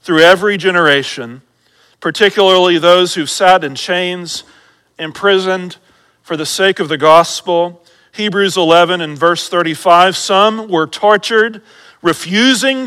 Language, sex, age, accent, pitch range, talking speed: English, male, 40-59, American, 180-230 Hz, 115 wpm